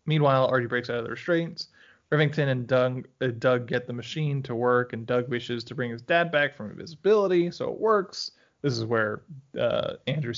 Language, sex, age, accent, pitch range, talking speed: English, male, 20-39, American, 120-150 Hz, 200 wpm